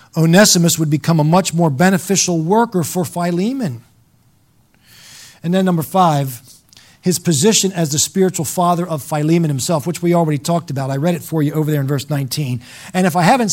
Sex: male